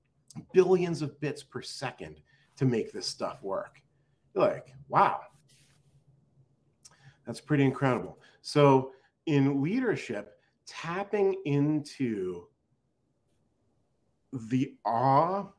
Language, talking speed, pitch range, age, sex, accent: English, 85 wpm, 125-185 Hz, 40-59, male, American